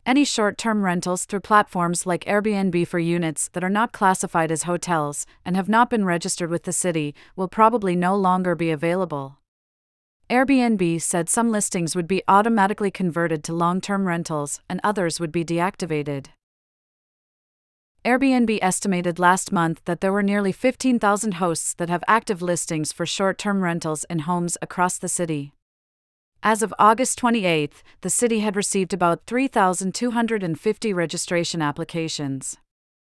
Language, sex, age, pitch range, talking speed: English, female, 40-59, 170-210 Hz, 145 wpm